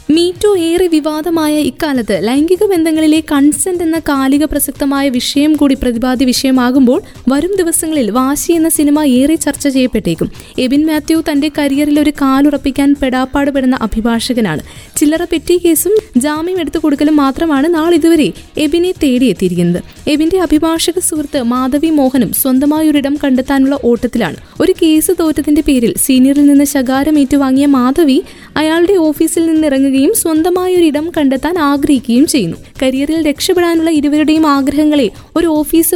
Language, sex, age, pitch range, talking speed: Malayalam, female, 20-39, 265-320 Hz, 110 wpm